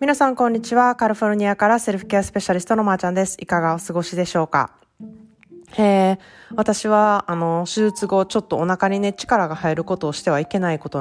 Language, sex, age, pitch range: Japanese, female, 20-39, 135-175 Hz